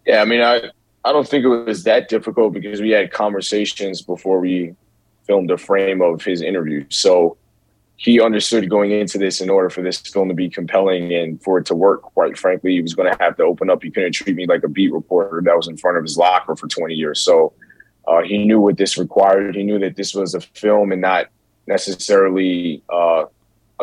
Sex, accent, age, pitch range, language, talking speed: male, American, 20-39, 90-105 Hz, English, 220 wpm